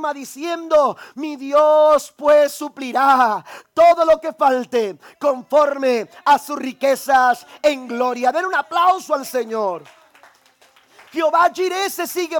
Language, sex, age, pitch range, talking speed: Spanish, male, 40-59, 180-265 Hz, 115 wpm